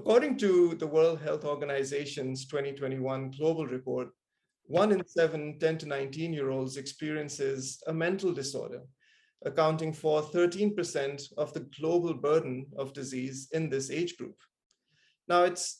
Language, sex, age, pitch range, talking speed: English, male, 30-49, 140-175 Hz, 135 wpm